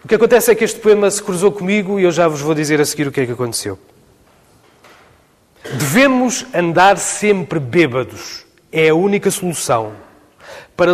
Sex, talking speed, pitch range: male, 175 wpm, 135-180 Hz